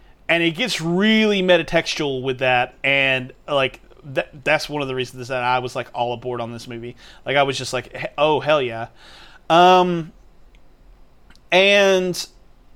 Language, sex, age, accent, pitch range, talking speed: English, male, 30-49, American, 130-180 Hz, 165 wpm